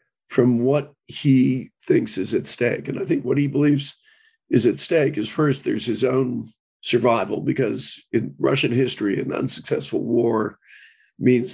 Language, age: English, 40-59